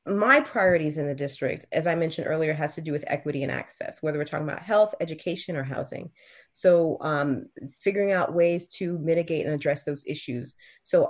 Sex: female